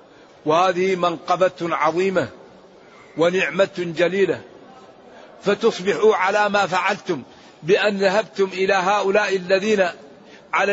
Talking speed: 85 wpm